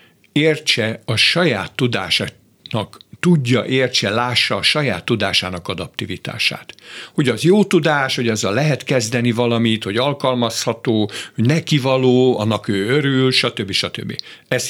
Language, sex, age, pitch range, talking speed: Hungarian, male, 60-79, 105-145 Hz, 125 wpm